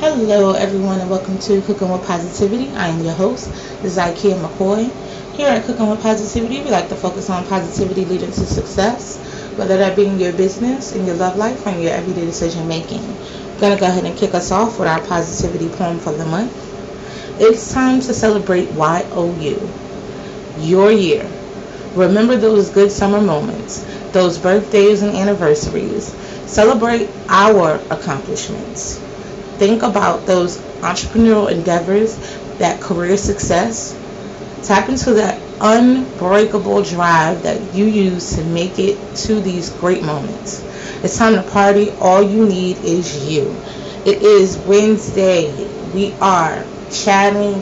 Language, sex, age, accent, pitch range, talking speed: English, female, 30-49, American, 185-210 Hz, 145 wpm